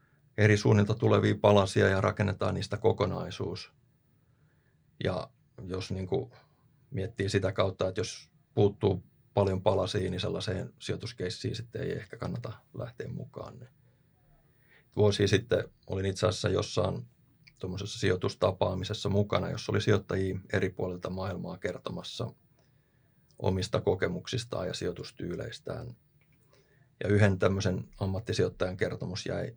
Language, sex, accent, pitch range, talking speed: Finnish, male, native, 95-125 Hz, 110 wpm